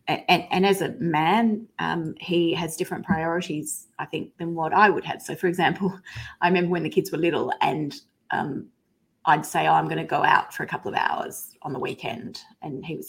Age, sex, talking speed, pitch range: 30-49, female, 220 wpm, 170-220 Hz